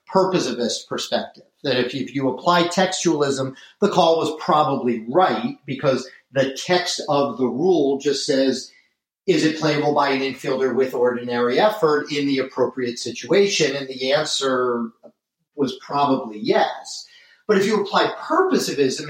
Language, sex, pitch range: English, male, 135-180 Hz